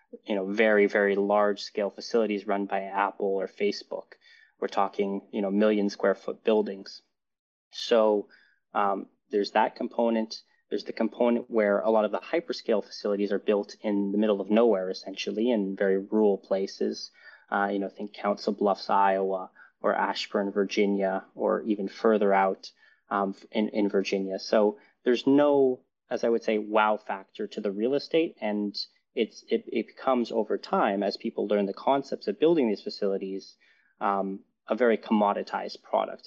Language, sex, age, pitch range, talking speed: English, male, 20-39, 100-115 Hz, 165 wpm